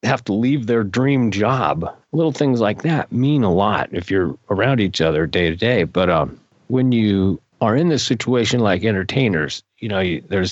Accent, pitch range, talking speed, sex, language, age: American, 100-125 Hz, 200 wpm, male, English, 40-59